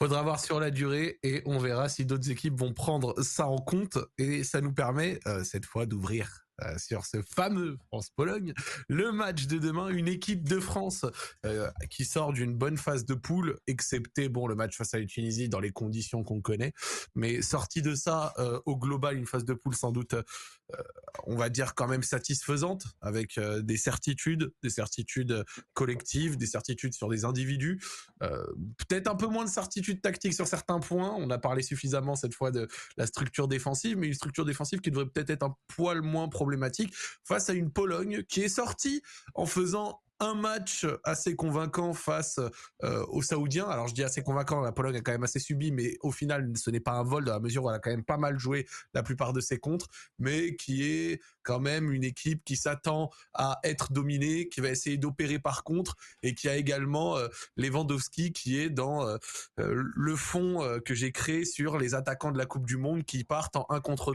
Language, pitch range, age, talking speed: French, 125-160 Hz, 20-39, 210 wpm